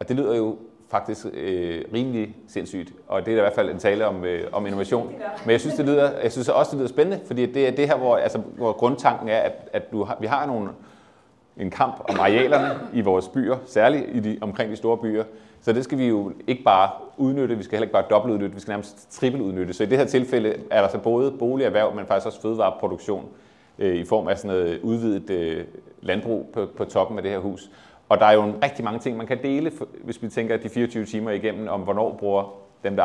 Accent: native